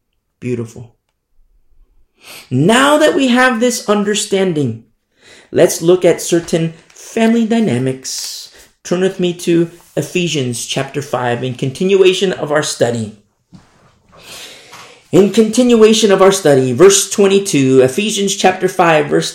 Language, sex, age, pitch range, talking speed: English, male, 30-49, 125-190 Hz, 110 wpm